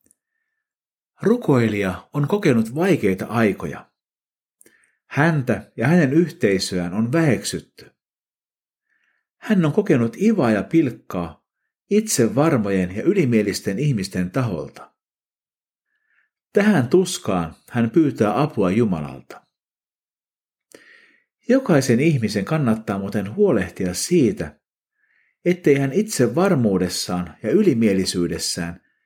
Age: 50-69